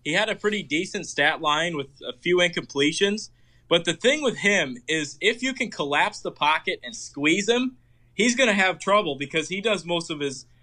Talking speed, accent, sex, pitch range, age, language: 210 wpm, American, male, 140-185 Hz, 20-39, English